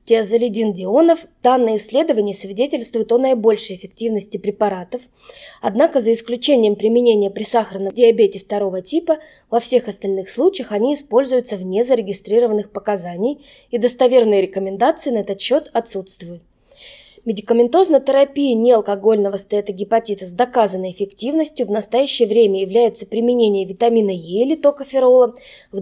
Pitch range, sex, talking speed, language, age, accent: 205-255 Hz, female, 115 wpm, Russian, 20-39, native